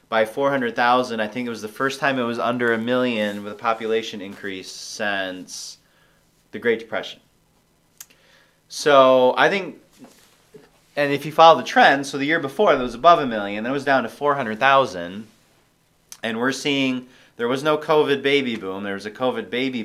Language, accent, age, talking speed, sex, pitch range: English, American, 30-49, 180 wpm, male, 110-140 Hz